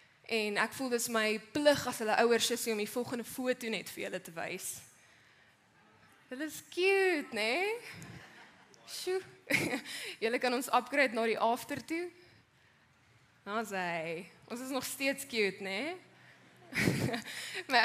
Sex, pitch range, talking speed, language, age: female, 195-260 Hz, 135 wpm, English, 20-39